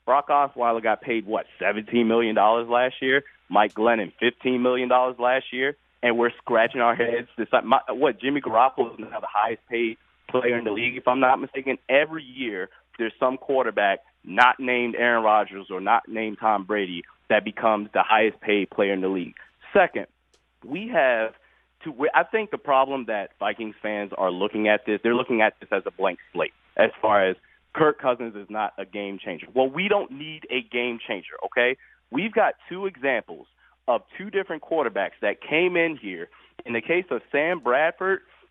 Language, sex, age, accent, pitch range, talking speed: English, male, 30-49, American, 110-140 Hz, 185 wpm